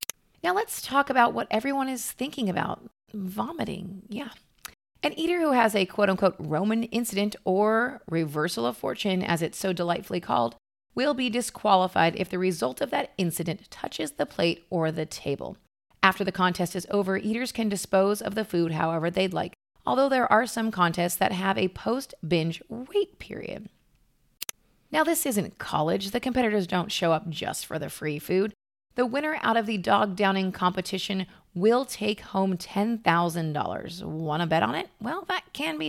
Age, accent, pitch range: 30-49, American, 175-230 Hz